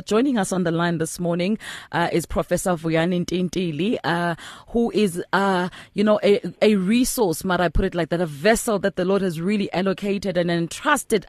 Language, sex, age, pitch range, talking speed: English, female, 30-49, 190-275 Hz, 190 wpm